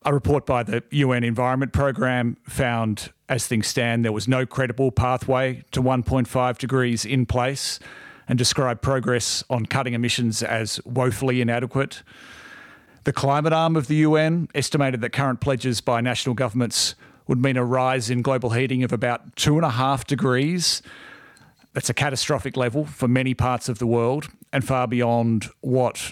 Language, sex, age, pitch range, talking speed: English, male, 40-59, 120-140 Hz, 155 wpm